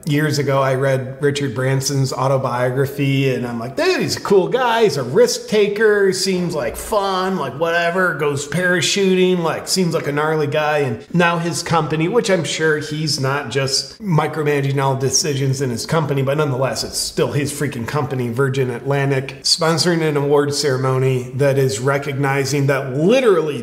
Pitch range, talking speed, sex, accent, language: 135-160 Hz, 170 wpm, male, American, English